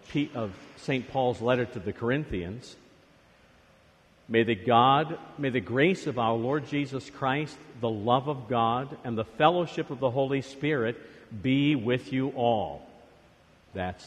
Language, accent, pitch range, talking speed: English, American, 120-150 Hz, 145 wpm